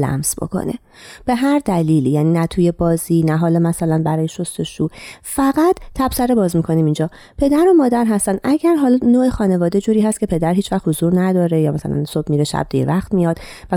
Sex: female